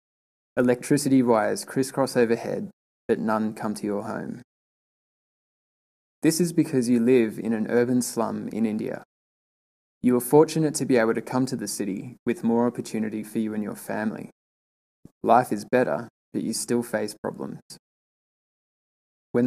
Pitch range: 110-125 Hz